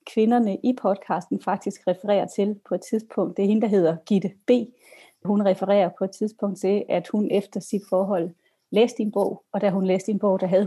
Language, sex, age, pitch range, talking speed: Danish, female, 30-49, 170-205 Hz, 215 wpm